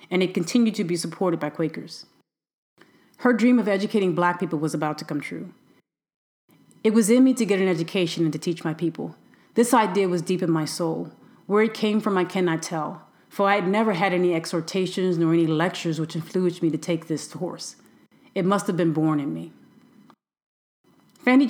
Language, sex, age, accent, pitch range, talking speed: English, female, 30-49, American, 170-215 Hz, 200 wpm